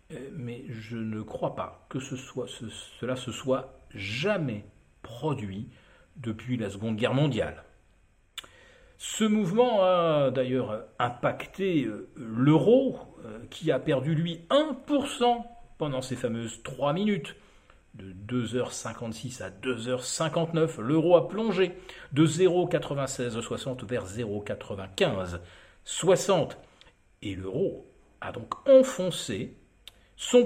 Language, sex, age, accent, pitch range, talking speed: French, male, 50-69, French, 115-170 Hz, 100 wpm